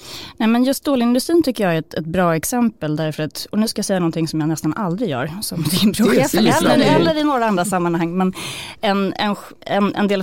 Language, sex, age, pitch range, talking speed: Swedish, female, 30-49, 155-205 Hz, 225 wpm